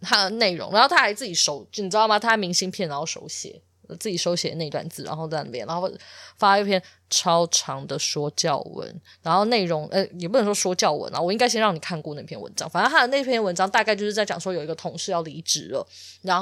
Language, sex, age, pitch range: Chinese, female, 20-39, 165-215 Hz